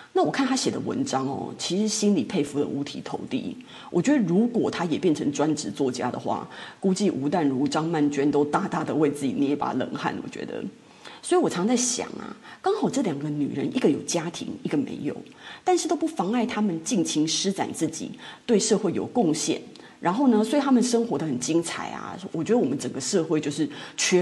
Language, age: Chinese, 30-49